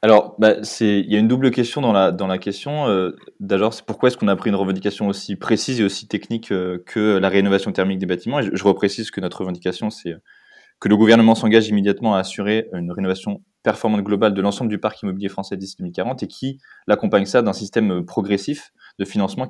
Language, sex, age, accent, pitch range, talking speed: French, male, 20-39, French, 100-120 Hz, 220 wpm